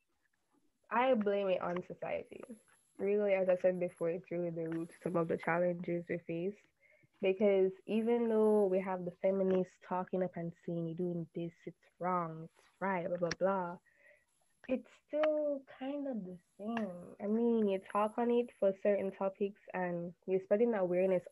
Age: 10-29